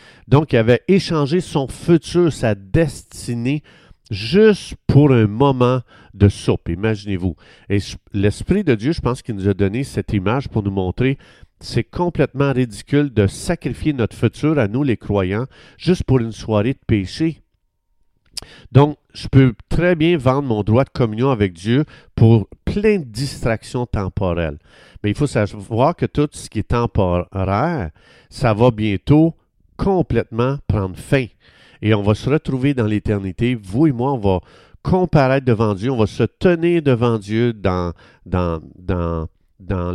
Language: French